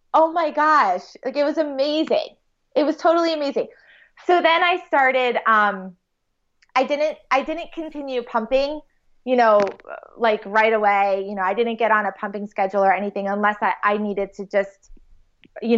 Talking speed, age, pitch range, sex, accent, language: 170 wpm, 20-39, 205-270 Hz, female, American, English